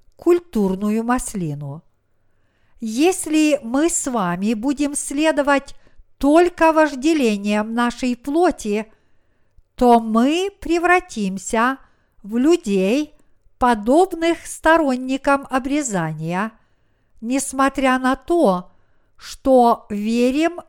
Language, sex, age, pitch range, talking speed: Russian, female, 50-69, 215-295 Hz, 75 wpm